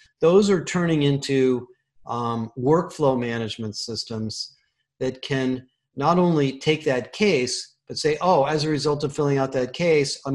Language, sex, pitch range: English, male, 125-150 Hz